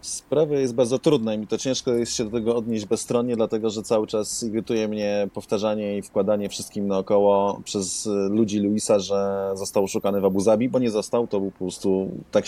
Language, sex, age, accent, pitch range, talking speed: Polish, male, 30-49, native, 105-115 Hz, 200 wpm